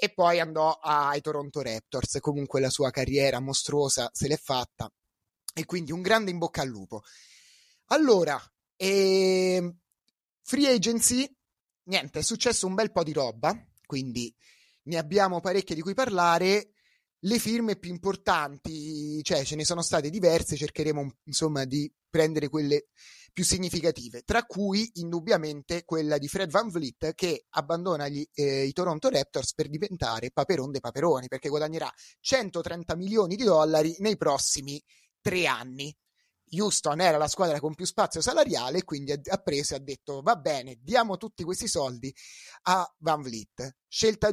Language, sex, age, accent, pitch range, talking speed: Italian, male, 30-49, native, 145-195 Hz, 150 wpm